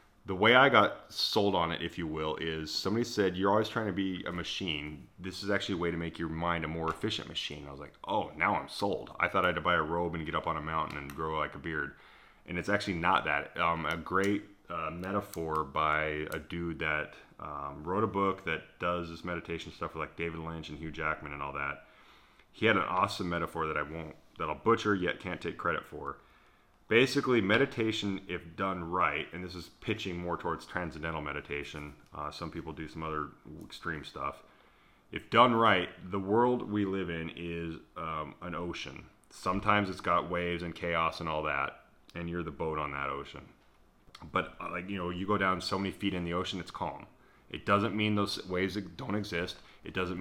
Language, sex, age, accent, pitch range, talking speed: English, male, 30-49, American, 80-95 Hz, 215 wpm